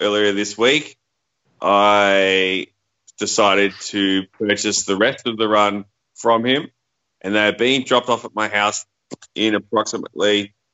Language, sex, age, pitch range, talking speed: English, male, 30-49, 100-115 Hz, 140 wpm